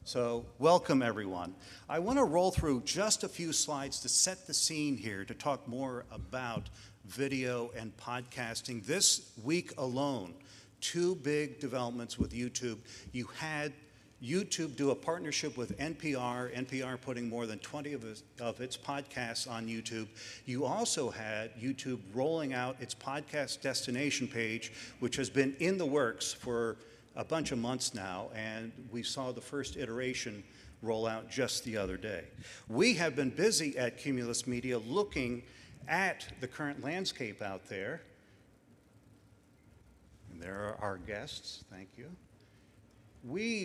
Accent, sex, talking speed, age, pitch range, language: American, male, 145 wpm, 50-69, 115-145 Hz, English